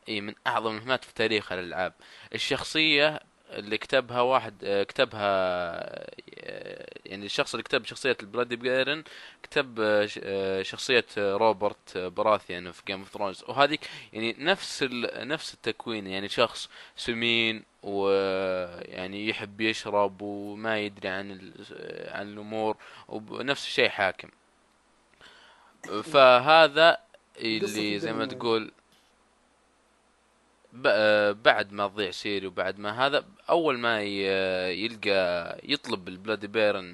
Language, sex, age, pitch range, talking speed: Arabic, male, 20-39, 100-125 Hz, 105 wpm